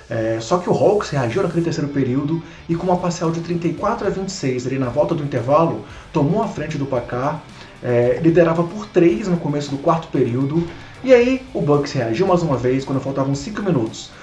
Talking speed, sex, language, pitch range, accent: 205 wpm, male, Portuguese, 145-185 Hz, Brazilian